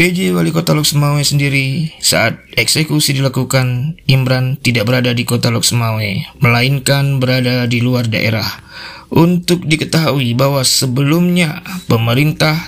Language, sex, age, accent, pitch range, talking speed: Indonesian, male, 20-39, native, 120-145 Hz, 115 wpm